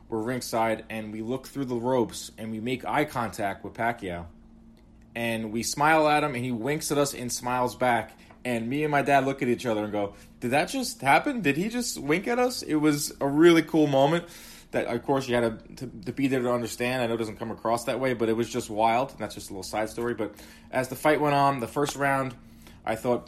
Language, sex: English, male